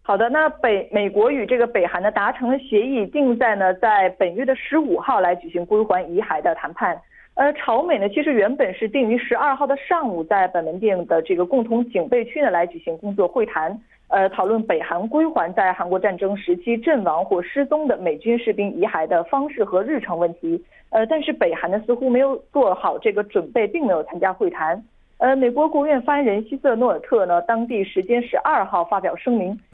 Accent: Chinese